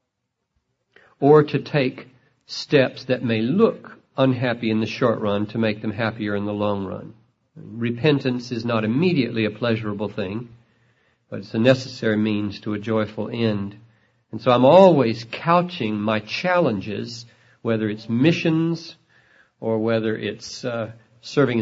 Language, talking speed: English, 140 wpm